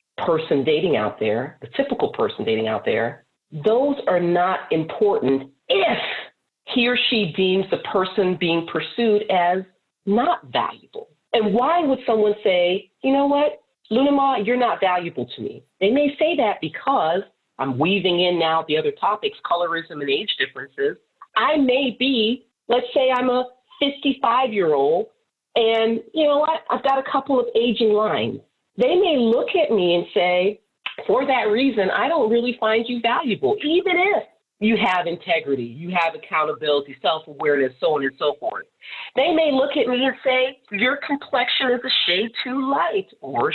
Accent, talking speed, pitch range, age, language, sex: American, 170 wpm, 185-290 Hz, 40-59, English, female